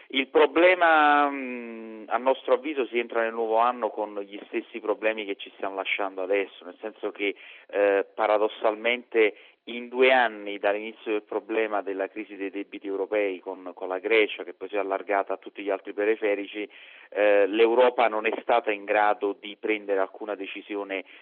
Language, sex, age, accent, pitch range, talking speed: Italian, male, 40-59, native, 100-130 Hz, 170 wpm